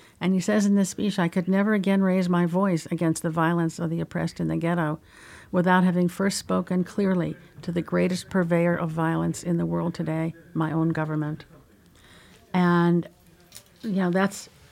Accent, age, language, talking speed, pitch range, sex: American, 60-79, English, 180 wpm, 160-175 Hz, female